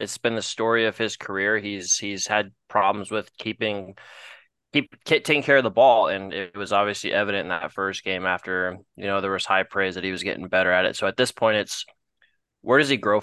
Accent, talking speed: American, 235 wpm